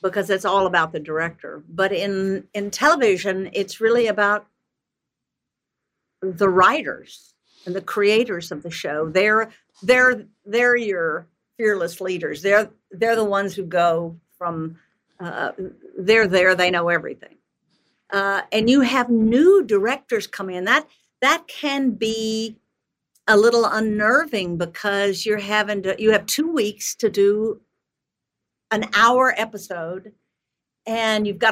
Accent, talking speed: American, 135 wpm